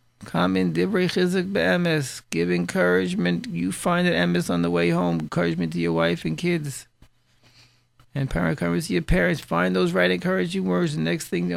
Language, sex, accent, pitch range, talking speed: English, male, American, 120-170 Hz, 160 wpm